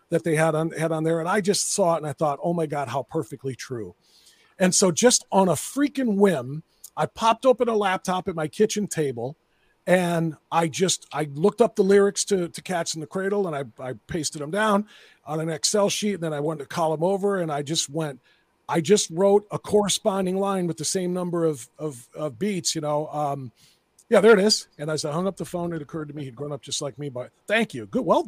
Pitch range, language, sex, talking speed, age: 160-215 Hz, English, male, 245 wpm, 40-59